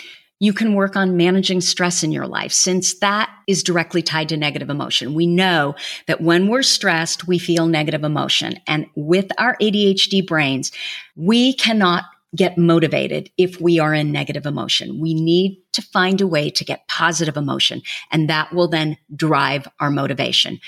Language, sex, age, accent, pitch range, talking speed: English, female, 40-59, American, 145-190 Hz, 170 wpm